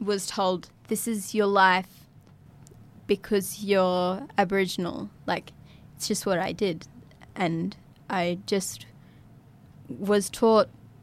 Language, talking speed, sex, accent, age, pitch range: English, 110 wpm, female, Australian, 20-39, 175-205 Hz